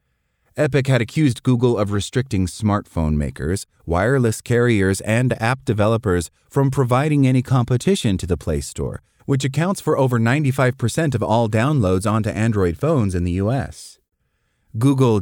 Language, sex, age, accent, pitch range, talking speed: English, male, 30-49, American, 95-130 Hz, 140 wpm